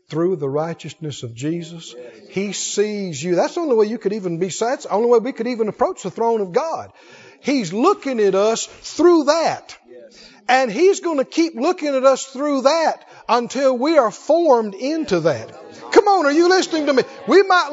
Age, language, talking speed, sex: 50-69, English, 195 wpm, male